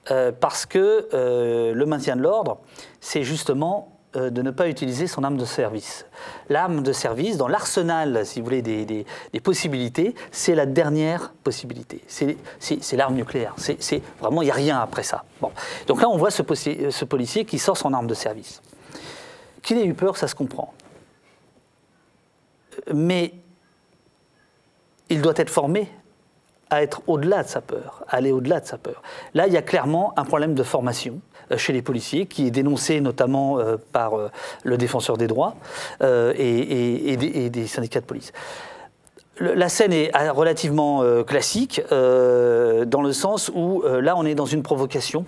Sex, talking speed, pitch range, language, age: male, 170 wpm, 130-180 Hz, French, 40-59